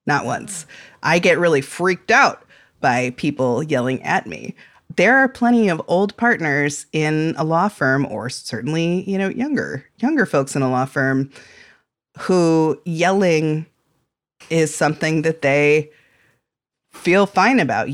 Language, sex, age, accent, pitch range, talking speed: English, female, 30-49, American, 145-185 Hz, 140 wpm